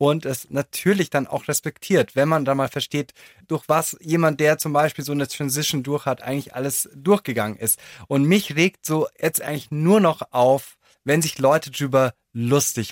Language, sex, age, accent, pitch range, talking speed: German, male, 20-39, German, 135-170 Hz, 185 wpm